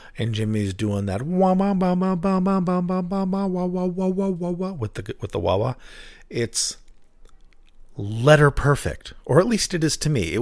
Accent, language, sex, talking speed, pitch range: American, English, male, 155 wpm, 95-135 Hz